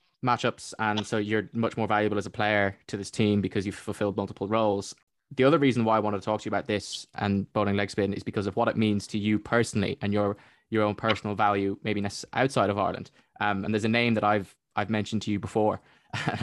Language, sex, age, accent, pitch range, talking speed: English, male, 20-39, British, 100-115 Hz, 245 wpm